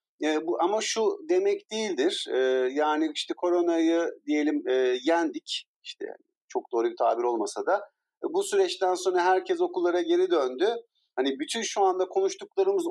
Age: 50-69